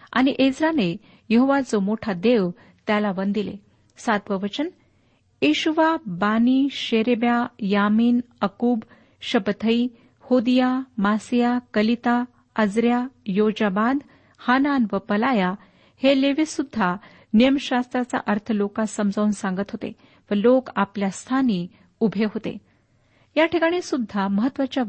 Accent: native